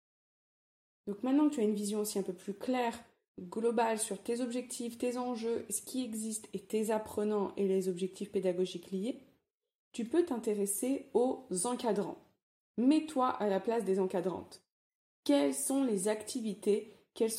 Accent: French